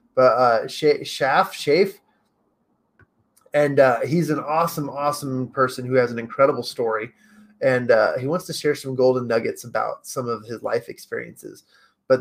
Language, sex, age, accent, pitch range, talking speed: English, male, 20-39, American, 125-150 Hz, 155 wpm